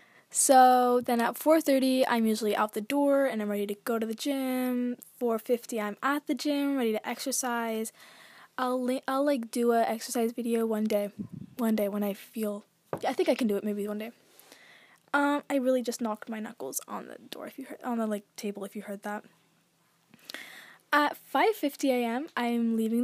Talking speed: 205 wpm